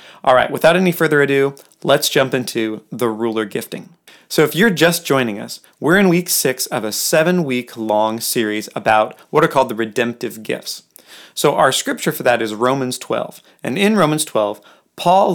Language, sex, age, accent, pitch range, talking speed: English, male, 30-49, American, 115-160 Hz, 180 wpm